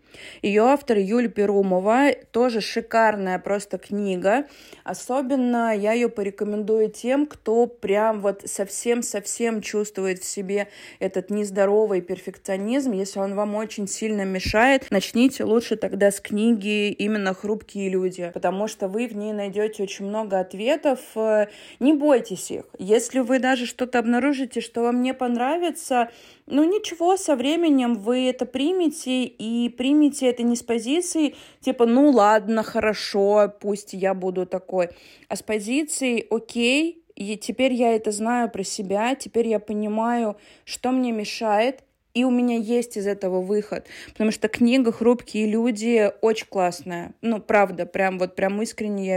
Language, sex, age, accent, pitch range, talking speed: Russian, female, 20-39, native, 200-250 Hz, 140 wpm